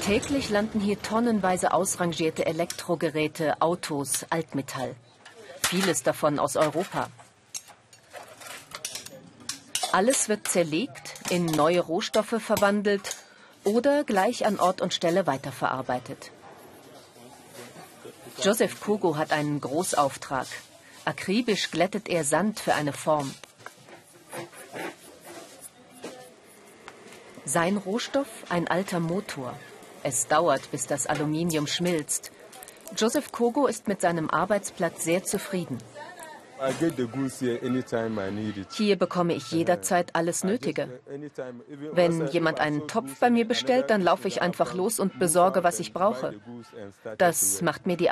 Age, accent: 40-59, German